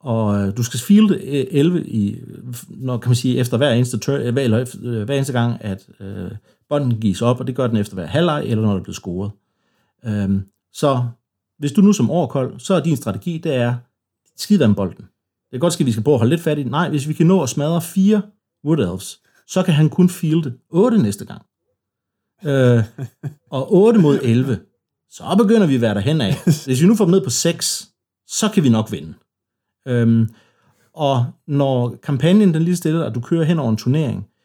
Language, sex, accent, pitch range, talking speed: Danish, male, native, 110-155 Hz, 210 wpm